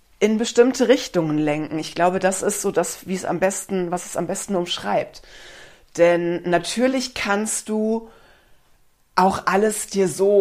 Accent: German